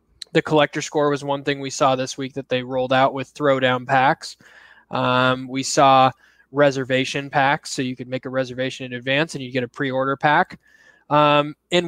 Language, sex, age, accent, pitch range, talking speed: English, male, 20-39, American, 130-150 Hz, 190 wpm